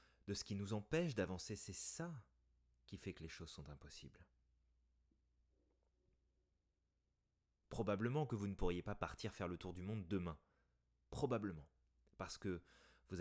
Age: 30-49